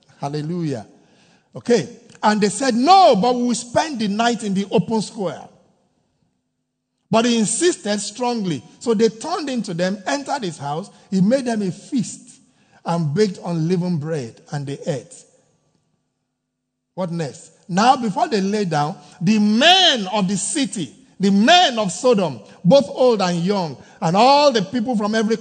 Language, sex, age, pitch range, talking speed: English, male, 50-69, 170-225 Hz, 160 wpm